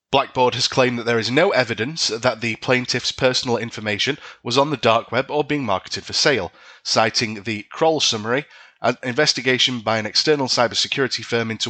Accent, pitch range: British, 110-130 Hz